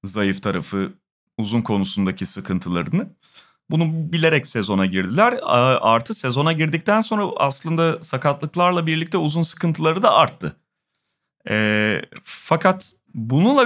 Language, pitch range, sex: Turkish, 115-160 Hz, male